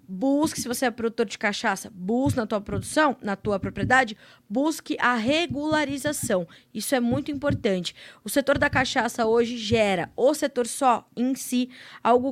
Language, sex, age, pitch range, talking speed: Portuguese, female, 20-39, 220-270 Hz, 160 wpm